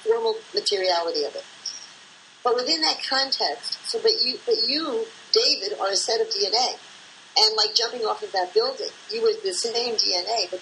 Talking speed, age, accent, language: 180 wpm, 50-69, American, English